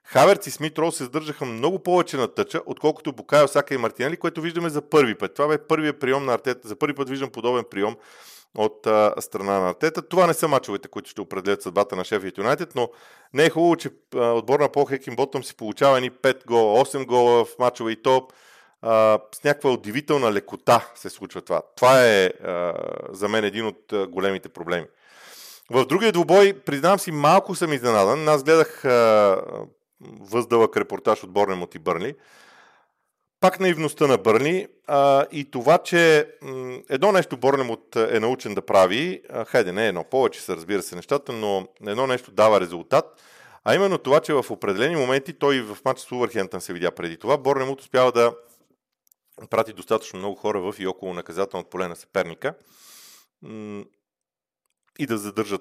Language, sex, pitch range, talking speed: Bulgarian, male, 110-150 Hz, 180 wpm